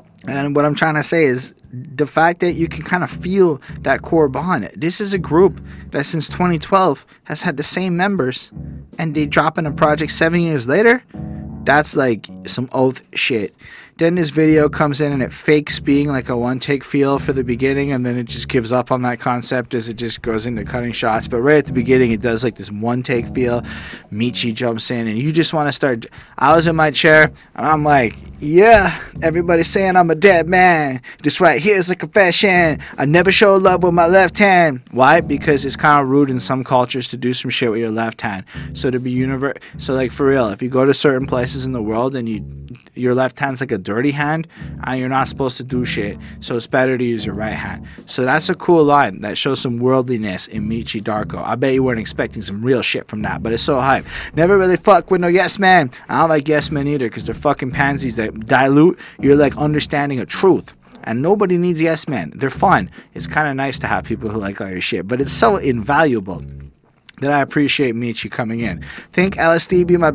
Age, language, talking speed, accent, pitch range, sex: 20-39, English, 230 wpm, American, 125-160 Hz, male